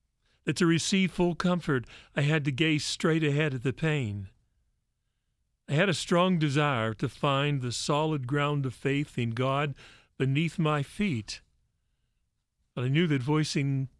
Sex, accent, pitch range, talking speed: male, American, 130-155 Hz, 155 wpm